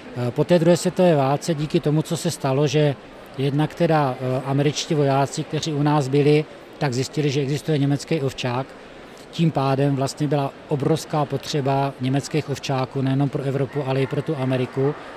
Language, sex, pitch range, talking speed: Czech, male, 130-150 Hz, 160 wpm